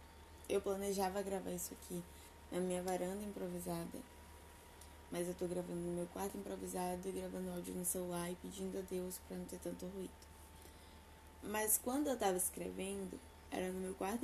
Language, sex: Portuguese, female